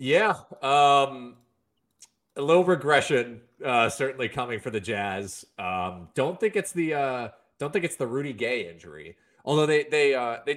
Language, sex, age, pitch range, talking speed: English, male, 30-49, 105-150 Hz, 165 wpm